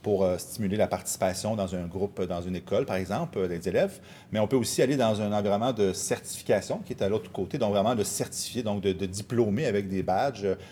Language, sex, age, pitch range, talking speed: French, male, 40-59, 95-115 Hz, 225 wpm